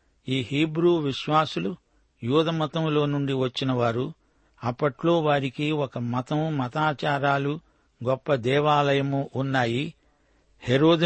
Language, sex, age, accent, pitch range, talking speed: Telugu, male, 60-79, native, 130-155 Hz, 80 wpm